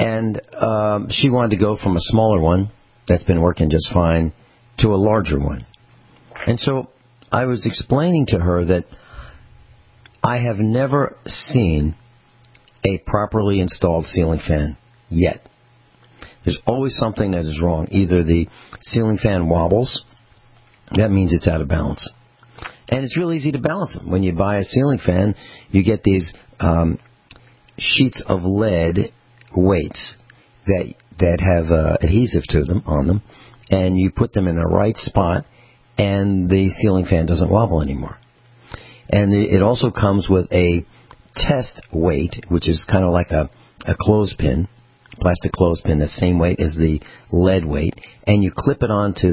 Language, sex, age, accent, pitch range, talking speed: English, male, 50-69, American, 85-120 Hz, 155 wpm